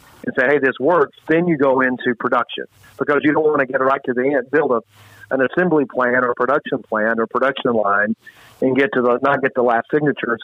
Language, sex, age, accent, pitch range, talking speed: English, male, 50-69, American, 120-140 Hz, 240 wpm